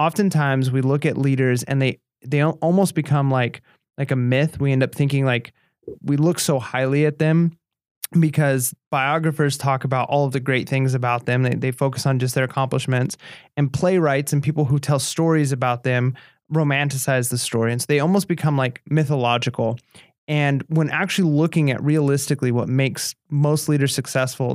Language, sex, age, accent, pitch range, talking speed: English, male, 20-39, American, 130-155 Hz, 180 wpm